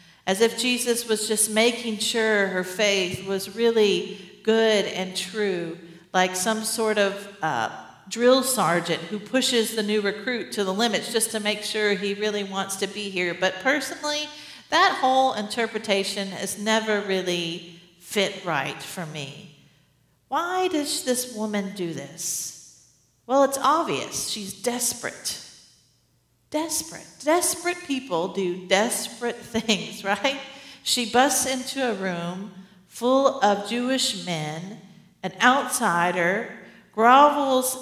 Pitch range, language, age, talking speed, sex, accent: 190-245 Hz, English, 50-69, 130 wpm, female, American